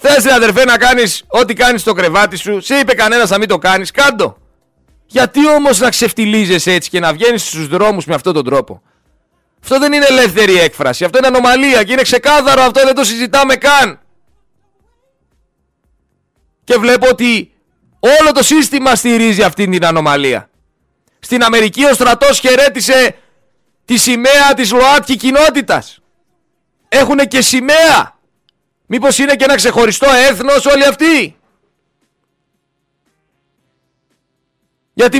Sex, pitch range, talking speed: male, 205-275 Hz, 135 wpm